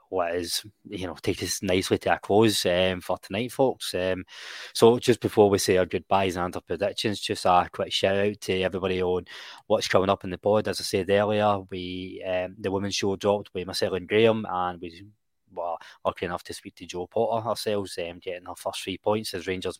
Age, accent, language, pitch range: 20-39, British, English, 90-100 Hz